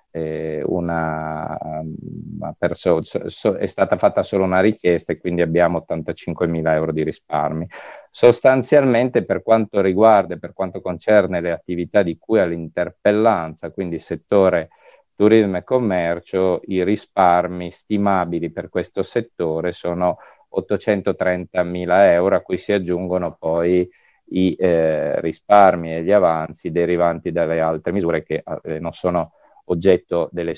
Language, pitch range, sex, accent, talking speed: Italian, 85-105 Hz, male, native, 130 wpm